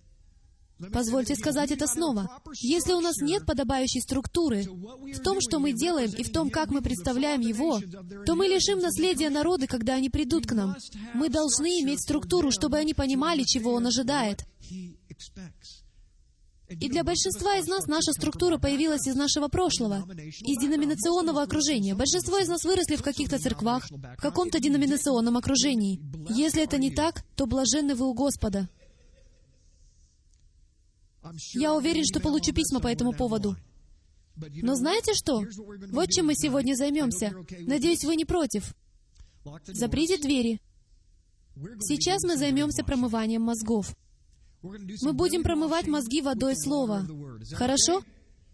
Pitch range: 215-315 Hz